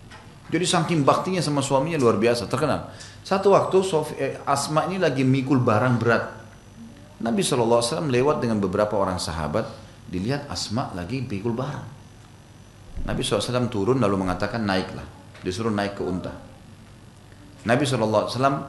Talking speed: 150 wpm